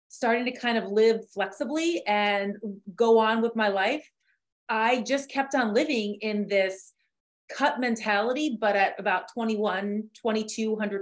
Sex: female